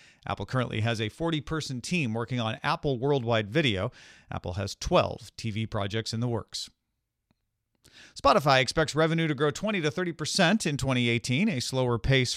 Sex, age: male, 40-59